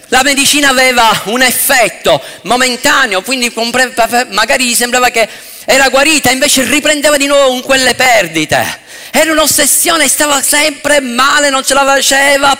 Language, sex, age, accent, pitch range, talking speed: Italian, male, 40-59, native, 260-310 Hz, 140 wpm